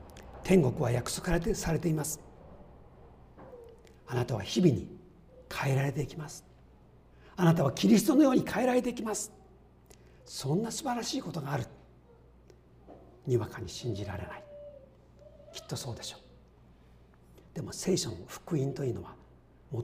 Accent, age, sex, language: native, 50-69, male, Japanese